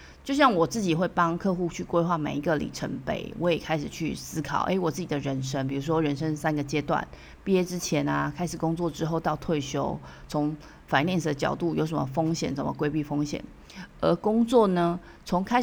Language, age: Chinese, 30-49